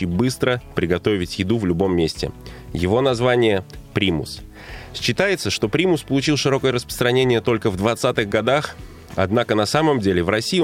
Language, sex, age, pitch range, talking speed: Russian, male, 20-39, 95-130 Hz, 145 wpm